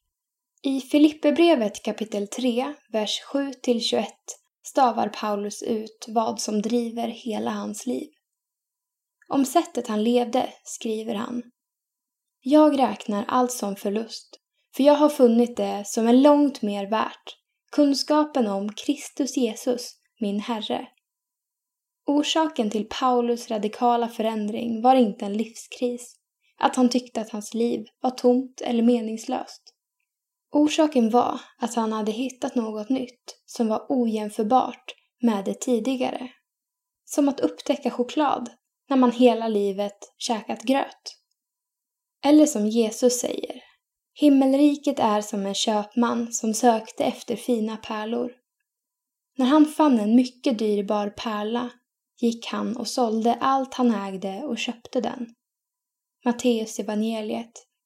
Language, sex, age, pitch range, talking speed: Swedish, female, 10-29, 225-285 Hz, 125 wpm